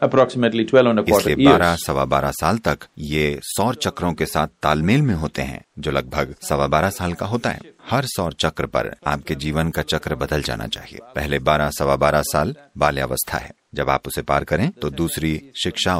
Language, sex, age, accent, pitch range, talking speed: Hindi, male, 40-59, native, 75-105 Hz, 190 wpm